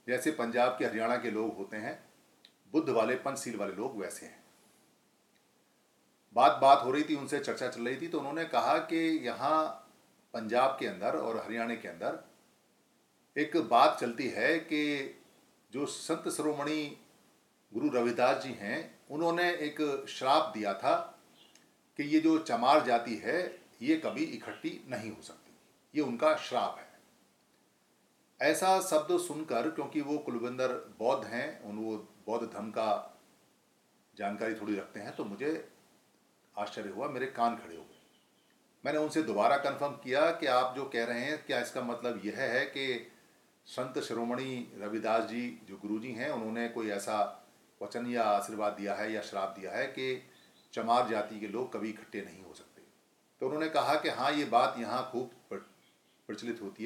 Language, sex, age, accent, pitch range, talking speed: Hindi, male, 50-69, native, 110-150 Hz, 160 wpm